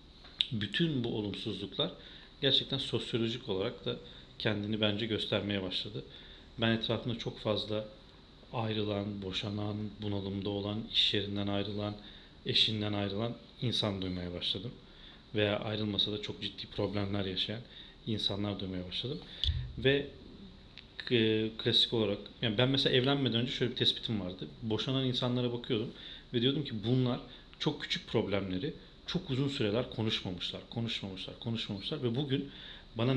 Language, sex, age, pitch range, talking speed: Turkish, male, 40-59, 100-125 Hz, 125 wpm